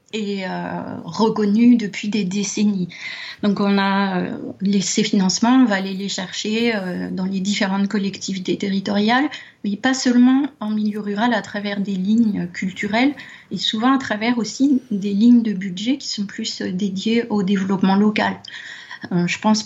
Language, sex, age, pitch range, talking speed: French, female, 30-49, 190-235 Hz, 160 wpm